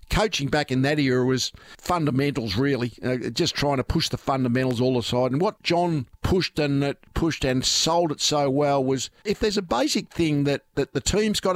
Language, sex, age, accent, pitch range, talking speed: English, male, 50-69, Australian, 140-175 Hz, 210 wpm